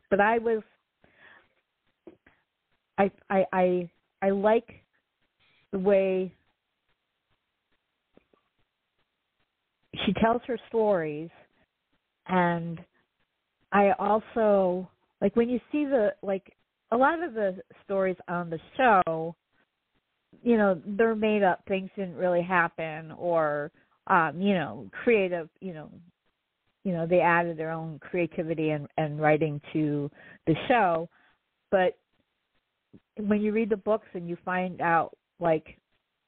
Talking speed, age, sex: 115 wpm, 50-69, female